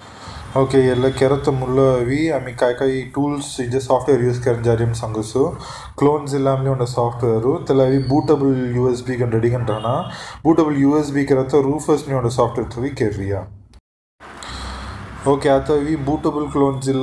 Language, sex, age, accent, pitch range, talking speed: English, male, 20-39, Indian, 125-150 Hz, 90 wpm